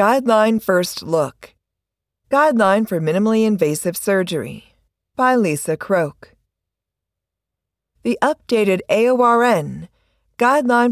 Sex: female